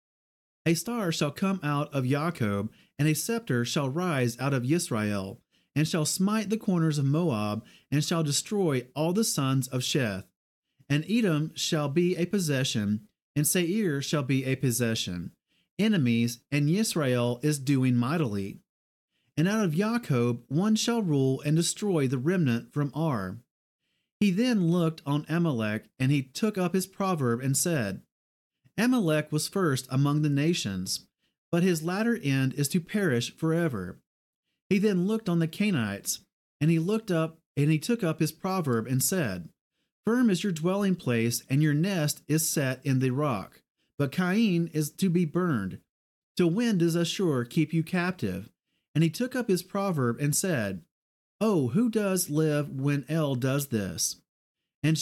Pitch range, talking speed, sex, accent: 130-180 Hz, 160 wpm, male, American